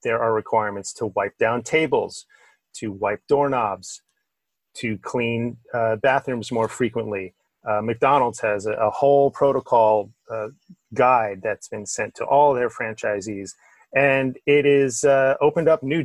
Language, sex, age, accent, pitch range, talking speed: English, male, 30-49, American, 110-140 Hz, 140 wpm